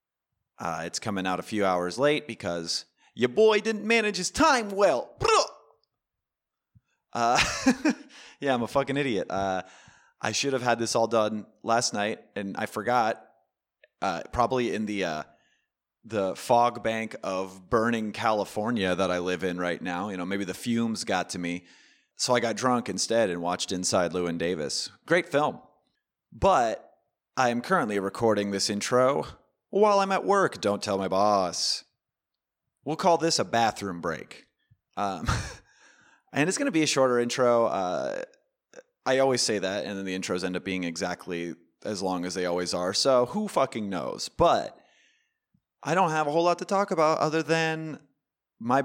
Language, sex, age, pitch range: English, male, 30-49, 95-145 Hz